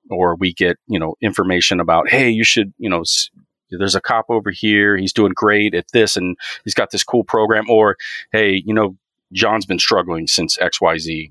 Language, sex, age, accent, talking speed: English, male, 40-59, American, 200 wpm